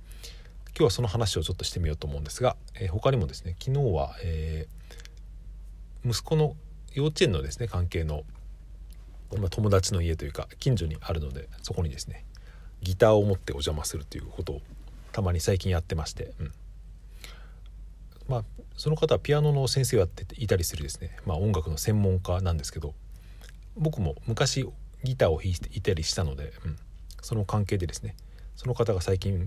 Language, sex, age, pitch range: Japanese, male, 40-59, 80-105 Hz